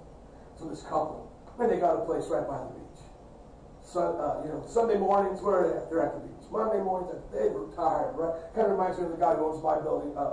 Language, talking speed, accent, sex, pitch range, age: English, 250 wpm, American, male, 135-175 Hz, 50-69